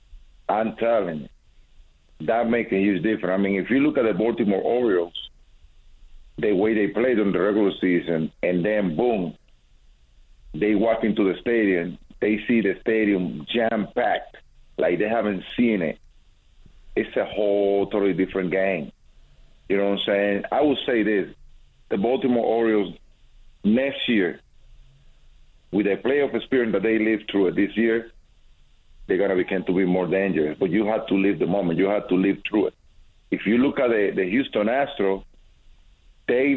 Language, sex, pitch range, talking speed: English, male, 85-115 Hz, 170 wpm